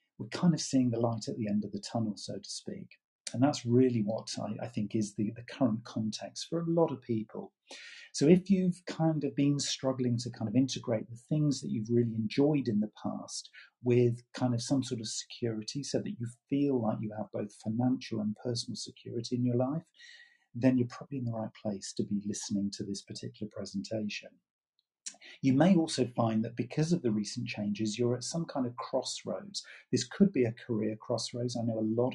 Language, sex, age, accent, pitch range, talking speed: English, male, 40-59, British, 110-130 Hz, 210 wpm